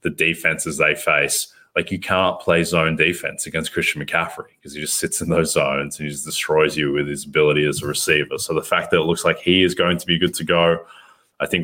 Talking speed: 245 wpm